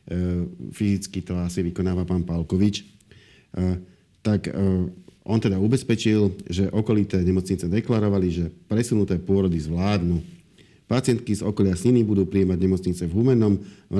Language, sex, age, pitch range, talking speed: Slovak, male, 50-69, 90-105 Hz, 135 wpm